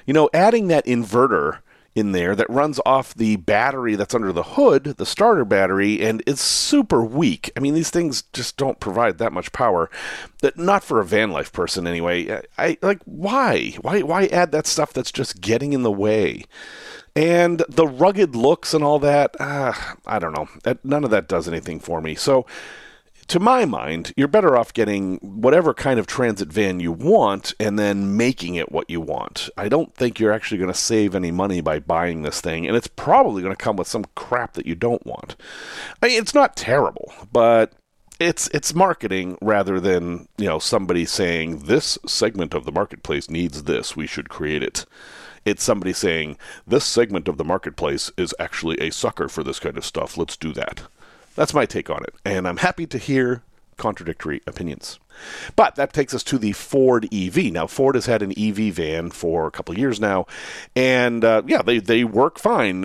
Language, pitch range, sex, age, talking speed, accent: English, 95-145 Hz, male, 40-59, 200 wpm, American